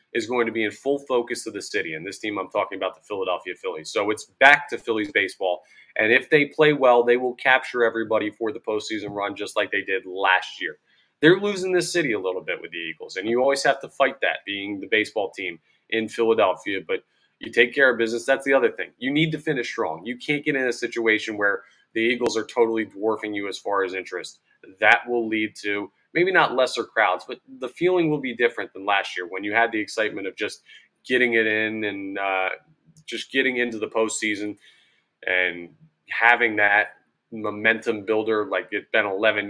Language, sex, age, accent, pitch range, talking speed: English, male, 20-39, American, 105-135 Hz, 215 wpm